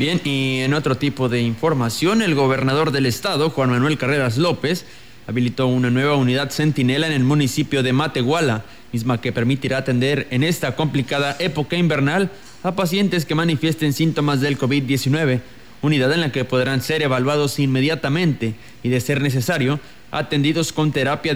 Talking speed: 155 wpm